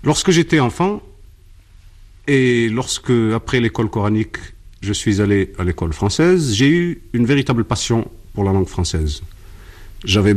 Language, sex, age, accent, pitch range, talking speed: French, male, 50-69, French, 95-130 Hz, 140 wpm